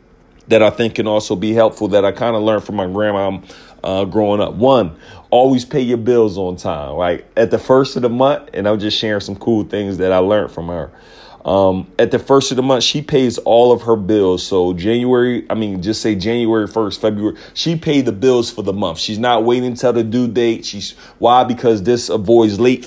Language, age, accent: English, 30-49, American